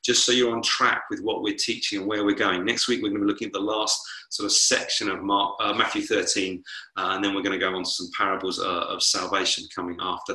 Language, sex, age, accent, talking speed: English, male, 30-49, British, 265 wpm